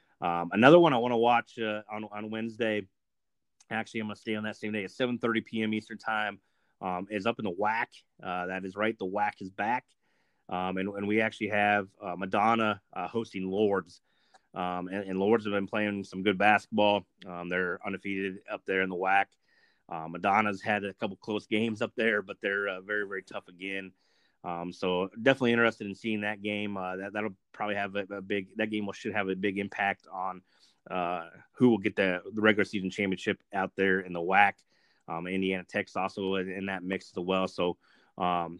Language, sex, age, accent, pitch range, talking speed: English, male, 30-49, American, 95-105 Hz, 210 wpm